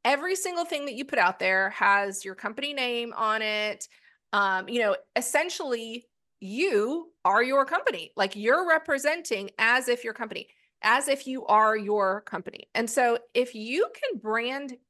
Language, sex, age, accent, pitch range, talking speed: English, female, 30-49, American, 220-310 Hz, 165 wpm